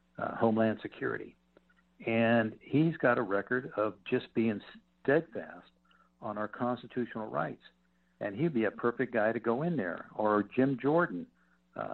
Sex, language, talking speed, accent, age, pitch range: male, English, 145 wpm, American, 60-79, 105-130 Hz